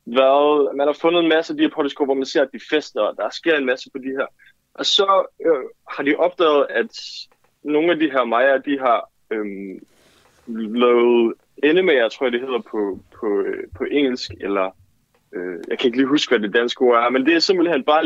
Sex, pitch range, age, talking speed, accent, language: male, 120-170 Hz, 20-39, 215 wpm, native, Danish